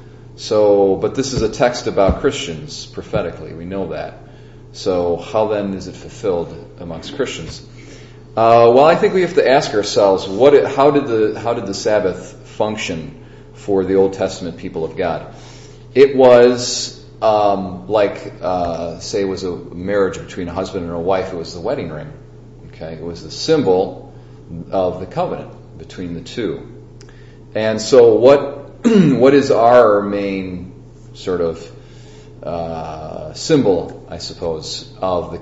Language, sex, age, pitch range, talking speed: English, male, 40-59, 85-110 Hz, 160 wpm